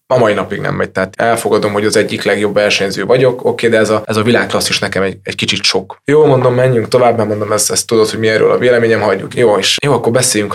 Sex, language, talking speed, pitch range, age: male, Hungarian, 260 wpm, 105-125 Hz, 20-39